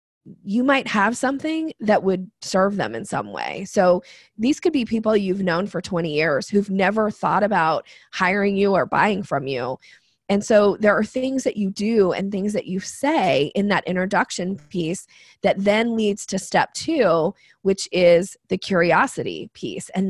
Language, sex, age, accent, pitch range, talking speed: English, female, 20-39, American, 185-225 Hz, 180 wpm